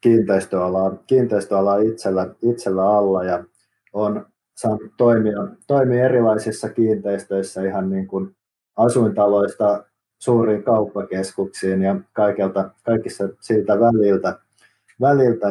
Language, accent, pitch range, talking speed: Finnish, native, 100-120 Hz, 90 wpm